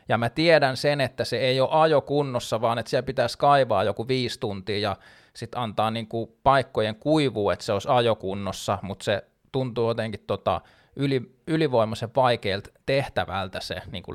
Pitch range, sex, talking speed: 110-155 Hz, male, 160 wpm